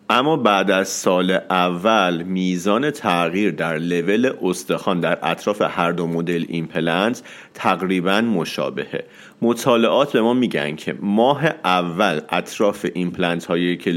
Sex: male